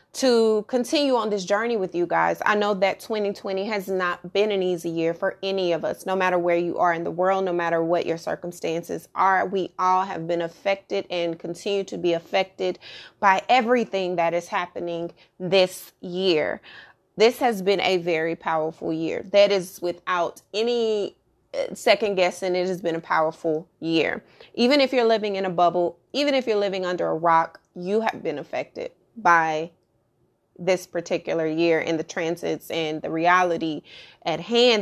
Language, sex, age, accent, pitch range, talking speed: English, female, 30-49, American, 170-200 Hz, 175 wpm